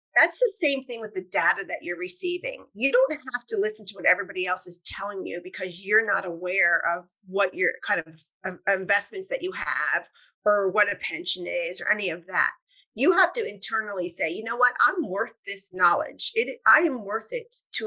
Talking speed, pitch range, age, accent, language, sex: 210 wpm, 195-325 Hz, 30-49, American, English, female